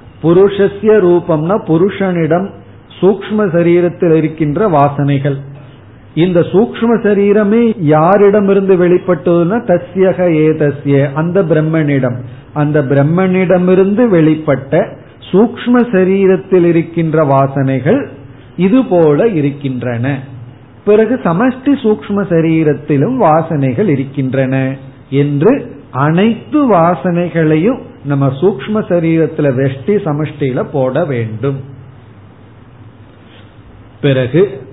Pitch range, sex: 135-175 Hz, male